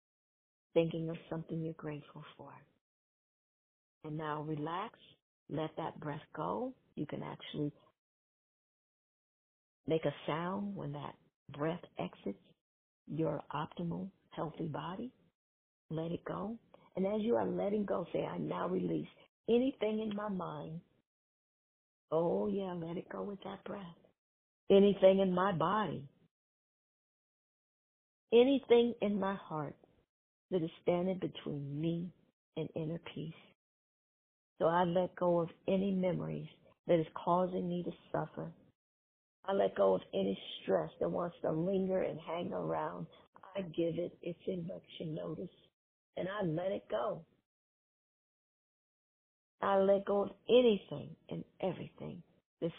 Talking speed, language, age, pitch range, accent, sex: 130 wpm, English, 50-69, 160-195 Hz, American, female